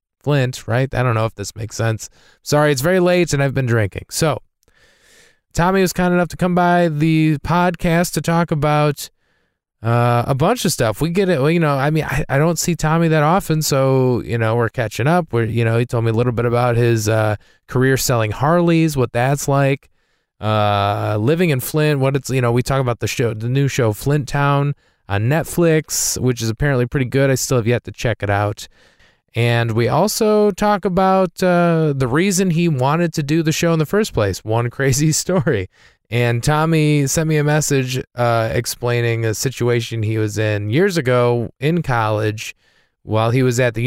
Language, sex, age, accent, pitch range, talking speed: English, male, 20-39, American, 115-165 Hz, 205 wpm